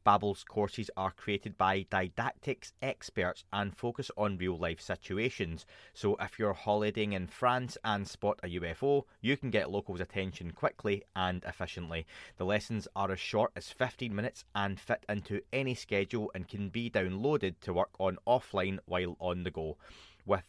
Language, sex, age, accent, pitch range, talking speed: English, male, 30-49, British, 90-110 Hz, 165 wpm